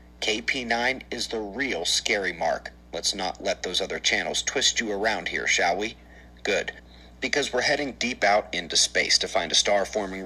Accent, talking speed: American, 180 wpm